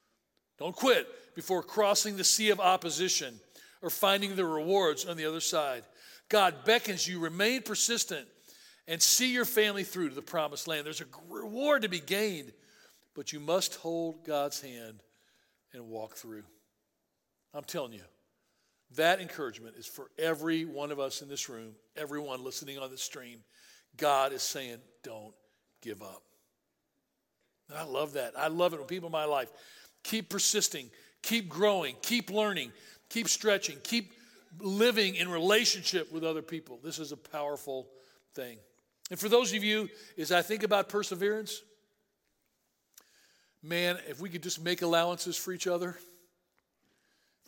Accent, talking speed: American, 155 wpm